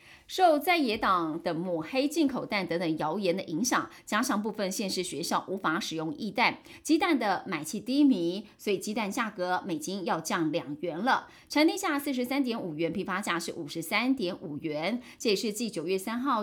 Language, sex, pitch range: Chinese, female, 180-260 Hz